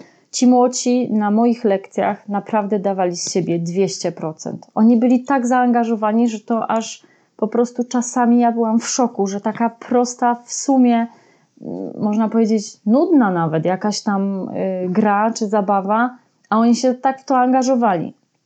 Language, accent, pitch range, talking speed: Polish, native, 195-230 Hz, 145 wpm